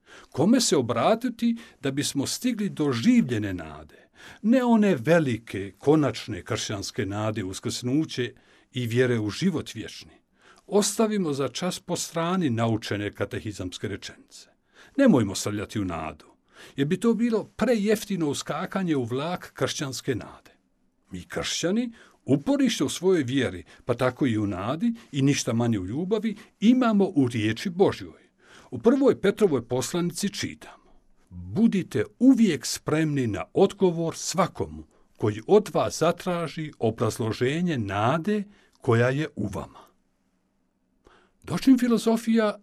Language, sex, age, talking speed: Croatian, male, 60-79, 120 wpm